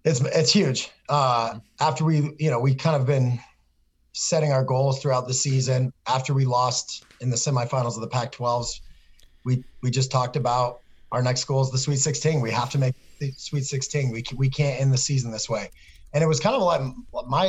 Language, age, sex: English, 30-49, male